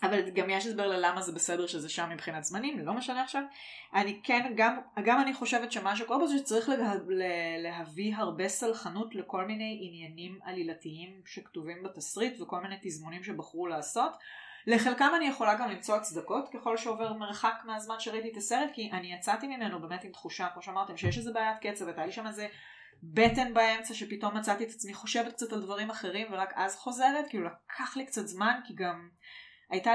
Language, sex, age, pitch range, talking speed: Hebrew, female, 20-39, 190-250 Hz, 160 wpm